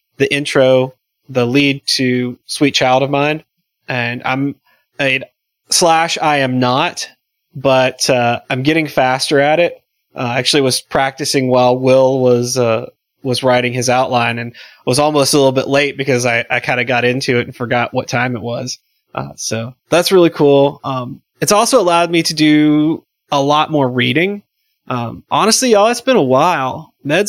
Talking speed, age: 180 wpm, 20-39